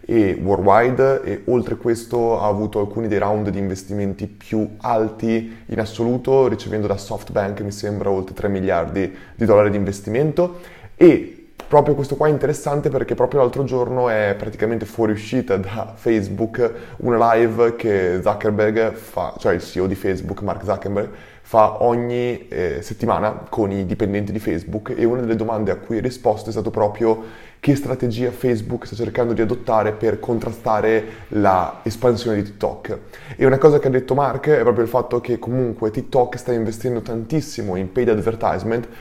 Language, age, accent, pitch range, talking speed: Italian, 20-39, native, 105-125 Hz, 165 wpm